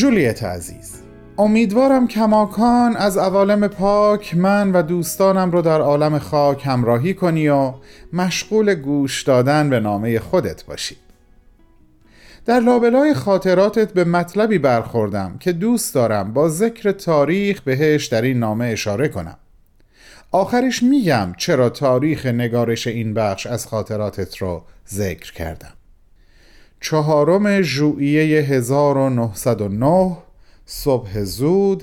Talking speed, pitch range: 110 wpm, 120-185 Hz